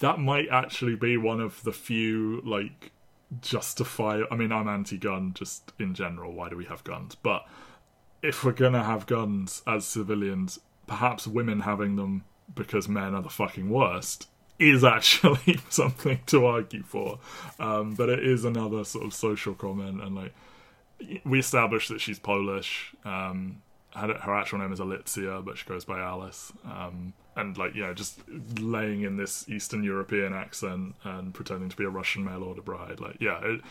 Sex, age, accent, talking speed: male, 20-39, British, 170 wpm